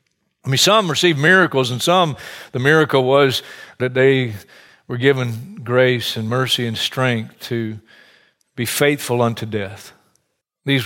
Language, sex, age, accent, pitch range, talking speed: English, male, 50-69, American, 125-160 Hz, 140 wpm